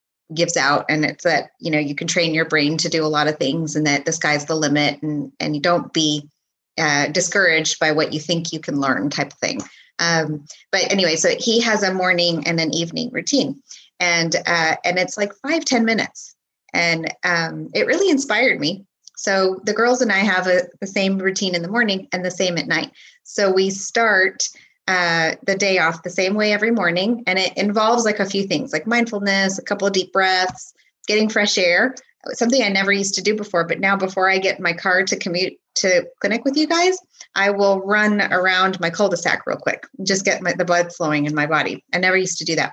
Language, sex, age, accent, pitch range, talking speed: English, female, 20-39, American, 165-205 Hz, 220 wpm